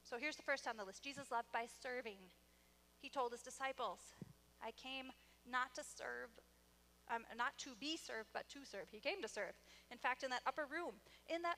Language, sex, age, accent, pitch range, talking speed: English, female, 30-49, American, 200-275 Hz, 205 wpm